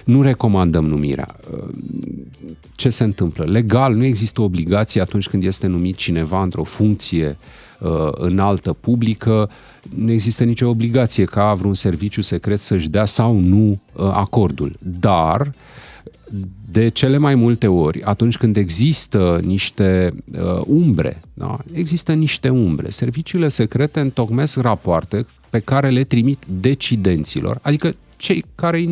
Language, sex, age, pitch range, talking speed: Romanian, male, 40-59, 100-150 Hz, 120 wpm